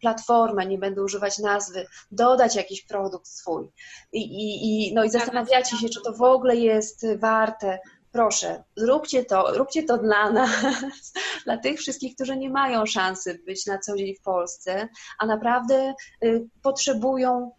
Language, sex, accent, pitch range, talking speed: Polish, female, native, 205-250 Hz, 155 wpm